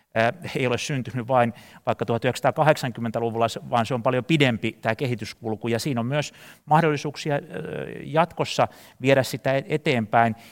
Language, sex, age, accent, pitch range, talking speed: Finnish, male, 30-49, native, 115-135 Hz, 125 wpm